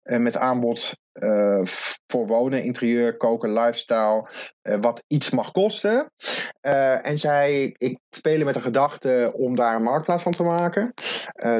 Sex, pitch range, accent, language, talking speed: male, 120-150 Hz, Dutch, Dutch, 145 wpm